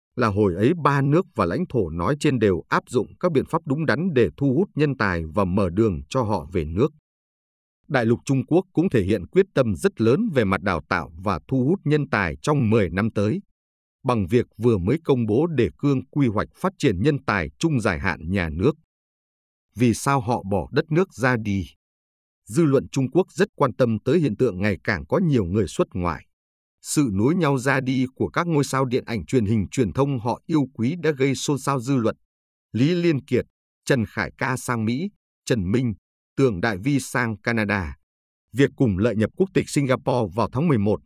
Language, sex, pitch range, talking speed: Vietnamese, male, 100-140 Hz, 215 wpm